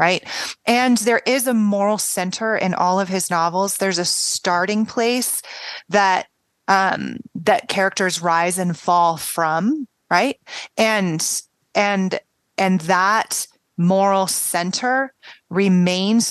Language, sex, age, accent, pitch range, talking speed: English, female, 30-49, American, 170-195 Hz, 120 wpm